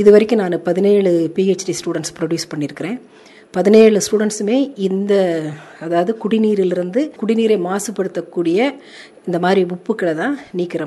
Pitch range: 165-210 Hz